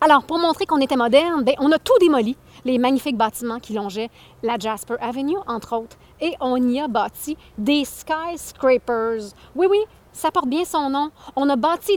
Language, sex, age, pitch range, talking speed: French, female, 30-49, 240-325 Hz, 190 wpm